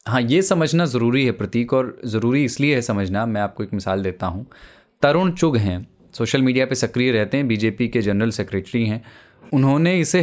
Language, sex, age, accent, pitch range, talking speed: Hindi, male, 20-39, native, 105-145 Hz, 195 wpm